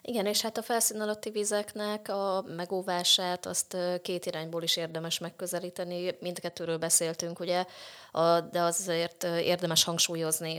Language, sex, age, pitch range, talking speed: Hungarian, female, 20-39, 150-170 Hz, 125 wpm